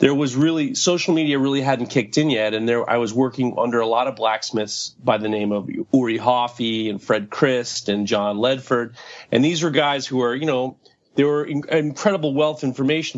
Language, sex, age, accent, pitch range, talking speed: English, male, 30-49, American, 115-140 Hz, 205 wpm